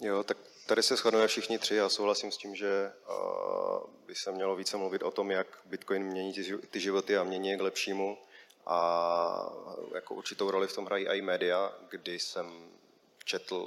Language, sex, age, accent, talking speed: Czech, male, 30-49, native, 180 wpm